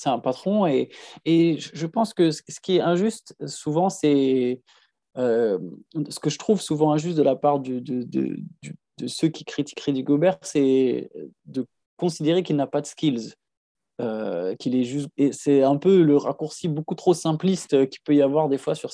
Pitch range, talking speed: 140-165 Hz, 195 wpm